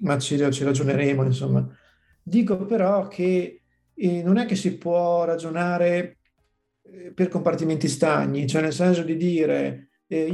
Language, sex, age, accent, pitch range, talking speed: Italian, male, 50-69, native, 145-175 Hz, 140 wpm